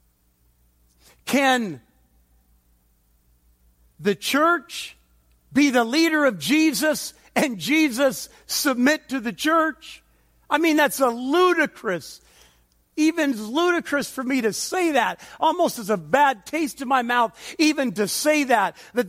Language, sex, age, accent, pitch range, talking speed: English, male, 50-69, American, 200-275 Hz, 125 wpm